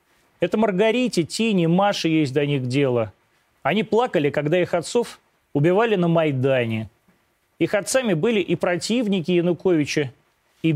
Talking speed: 130 wpm